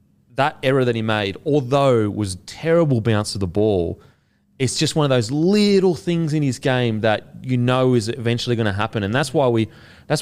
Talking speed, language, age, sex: 210 wpm, English, 30-49, male